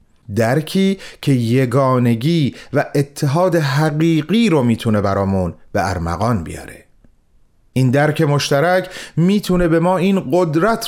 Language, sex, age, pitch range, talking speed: Persian, male, 30-49, 110-165 Hz, 110 wpm